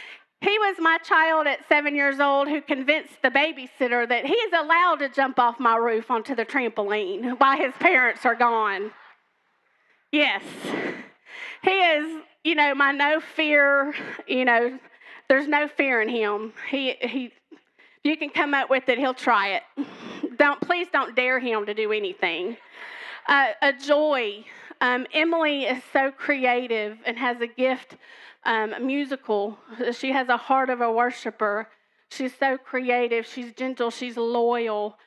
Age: 30-49